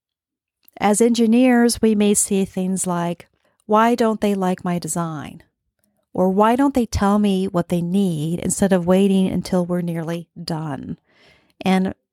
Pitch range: 180-225 Hz